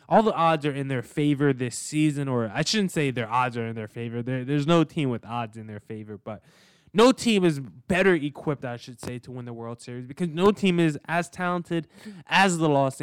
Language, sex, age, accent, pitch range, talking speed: English, male, 10-29, American, 125-170 Hz, 235 wpm